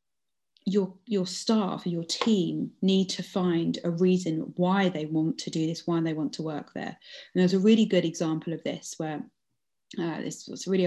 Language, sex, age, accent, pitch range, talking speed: English, female, 20-39, British, 165-195 Hz, 200 wpm